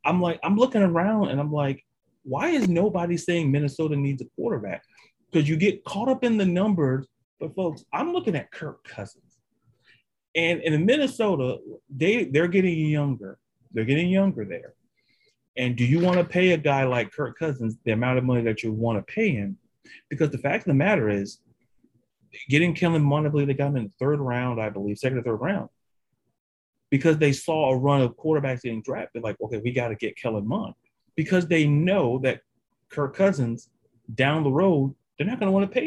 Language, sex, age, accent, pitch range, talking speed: English, male, 30-49, American, 130-195 Hz, 200 wpm